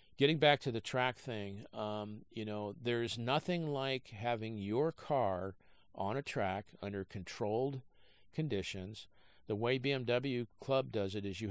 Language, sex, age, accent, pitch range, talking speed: English, male, 50-69, American, 100-125 Hz, 150 wpm